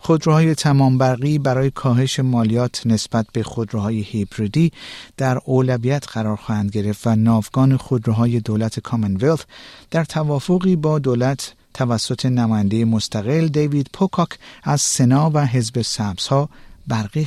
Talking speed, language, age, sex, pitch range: 125 wpm, Persian, 50-69, male, 110-150 Hz